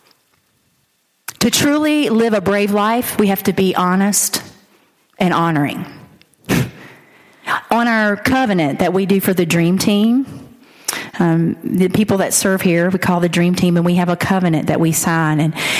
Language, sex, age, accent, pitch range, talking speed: English, female, 40-59, American, 175-215 Hz, 165 wpm